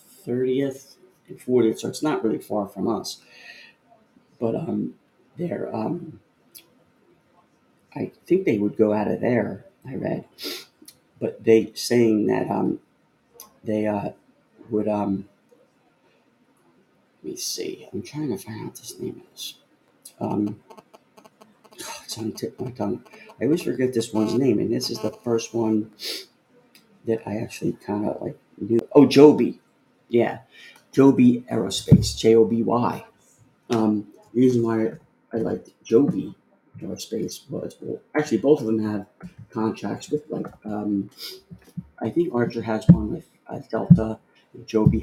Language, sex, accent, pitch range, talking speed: English, male, American, 105-120 Hz, 145 wpm